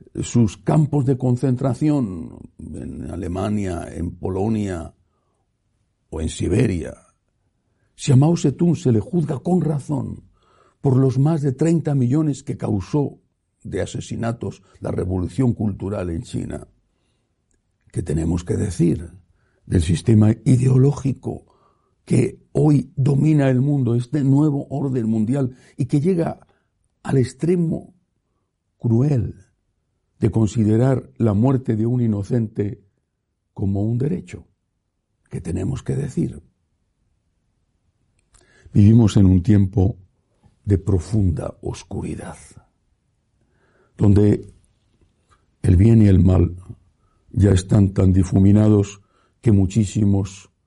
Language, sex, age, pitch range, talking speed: Spanish, male, 60-79, 95-130 Hz, 105 wpm